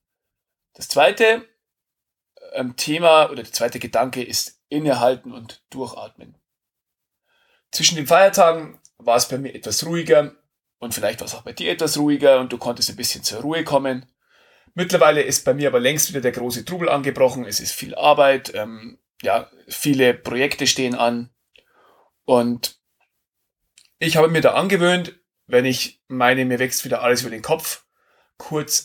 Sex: male